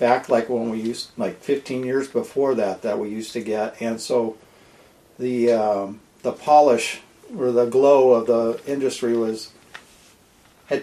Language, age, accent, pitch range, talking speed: English, 50-69, American, 110-130 Hz, 160 wpm